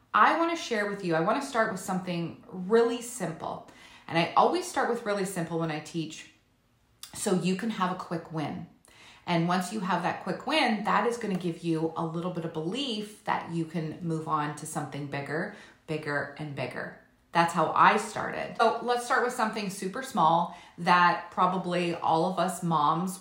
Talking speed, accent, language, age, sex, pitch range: 200 wpm, American, English, 30-49, female, 160-200 Hz